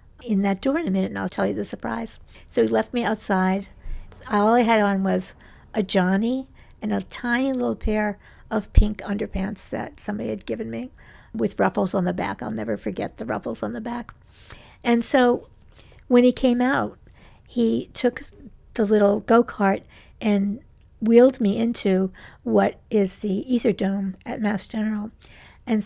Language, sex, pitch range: English, female, 195-225 Hz